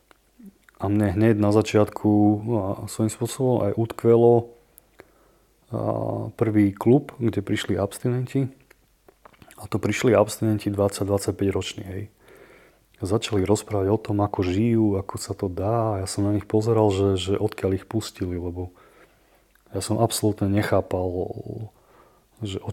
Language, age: Slovak, 30-49